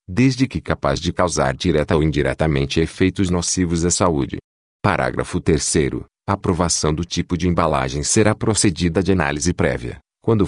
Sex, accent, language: male, Brazilian, Portuguese